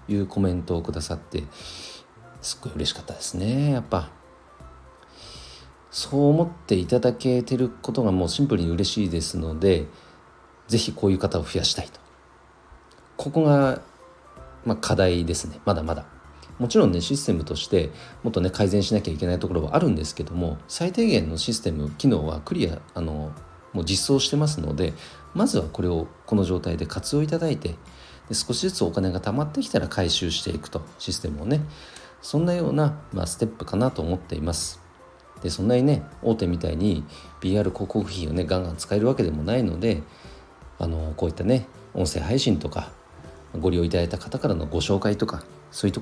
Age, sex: 40-59, male